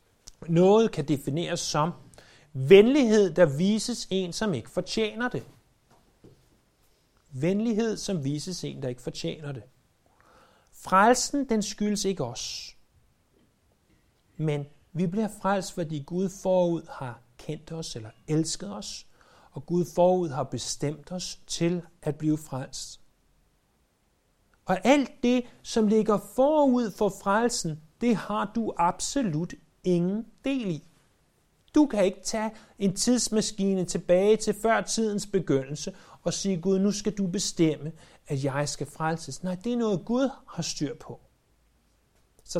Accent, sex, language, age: native, male, Danish, 60-79